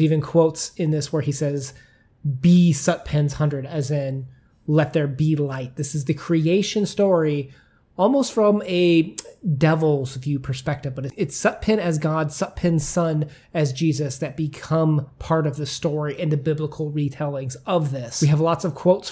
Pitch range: 145-175 Hz